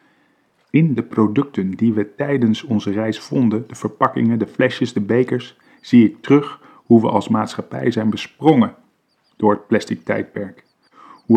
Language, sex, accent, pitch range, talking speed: Dutch, male, Dutch, 110-140 Hz, 155 wpm